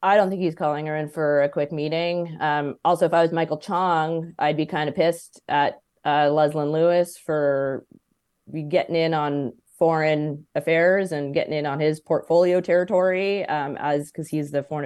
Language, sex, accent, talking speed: English, female, American, 185 wpm